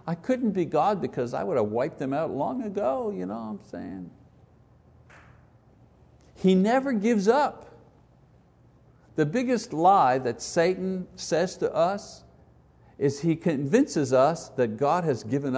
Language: English